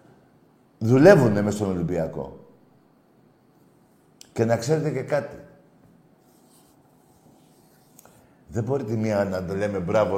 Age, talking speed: 50-69, 95 wpm